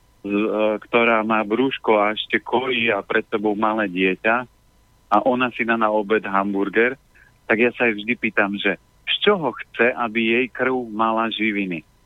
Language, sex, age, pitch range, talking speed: Slovak, male, 40-59, 100-115 Hz, 175 wpm